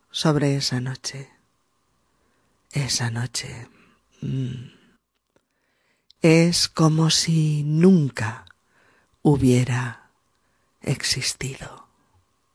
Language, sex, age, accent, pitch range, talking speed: Spanish, female, 40-59, Spanish, 135-180 Hz, 55 wpm